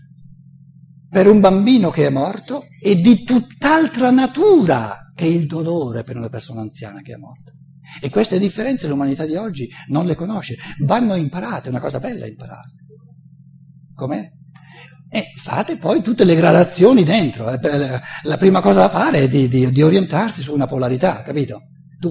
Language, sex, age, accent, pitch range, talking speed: Italian, male, 60-79, native, 145-180 Hz, 165 wpm